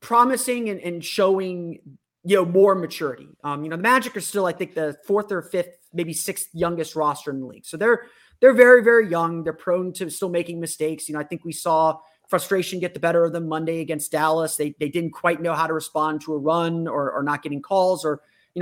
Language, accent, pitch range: English, American, 155-185 Hz